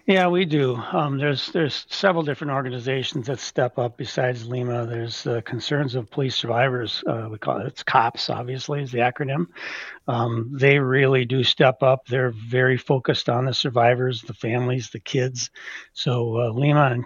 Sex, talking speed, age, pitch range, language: male, 180 wpm, 60-79, 120-140 Hz, English